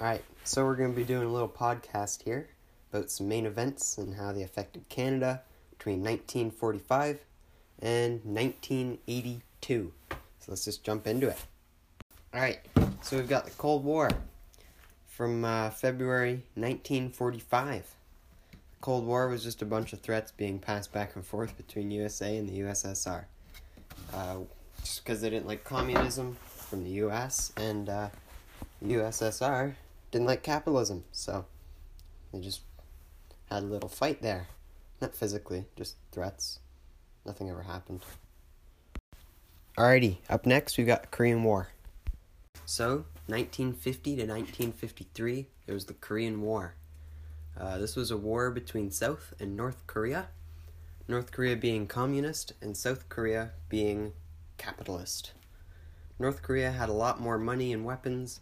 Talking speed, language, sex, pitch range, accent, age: 140 wpm, English, male, 85-120 Hz, American, 10-29